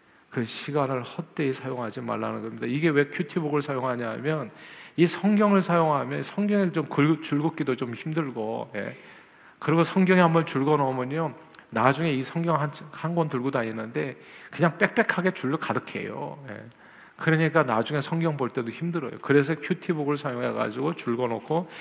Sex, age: male, 40-59